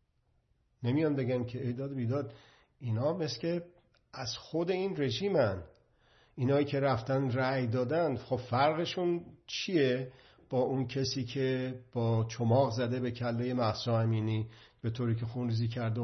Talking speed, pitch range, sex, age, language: 135 wpm, 115-130 Hz, male, 50-69, Persian